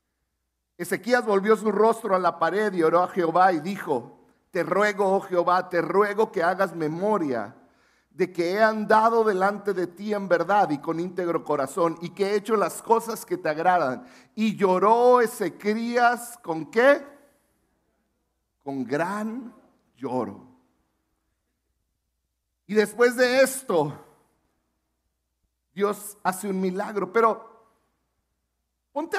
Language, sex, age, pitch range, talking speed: Spanish, male, 50-69, 180-270 Hz, 125 wpm